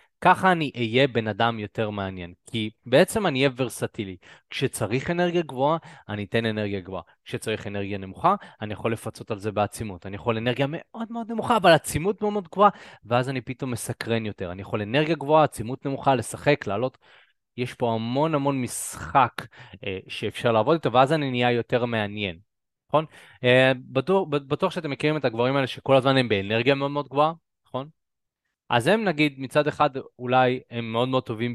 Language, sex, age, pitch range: Hebrew, male, 20-39, 110-145 Hz